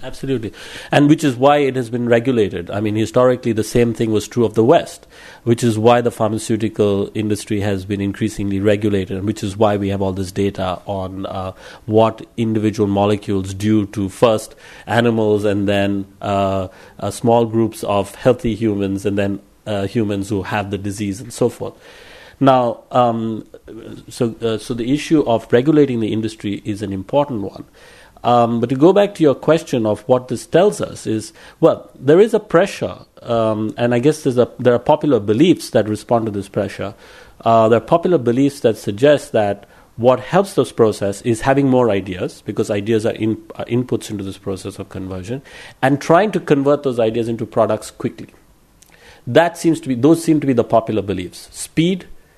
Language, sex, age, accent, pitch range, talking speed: English, male, 50-69, Indian, 100-125 Hz, 190 wpm